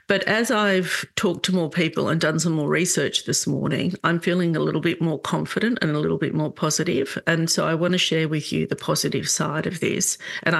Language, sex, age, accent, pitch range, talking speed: English, female, 50-69, Australian, 165-195 Hz, 230 wpm